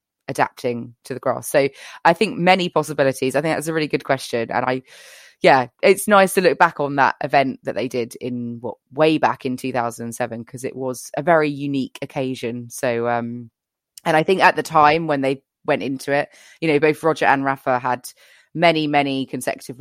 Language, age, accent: English, 20-39, British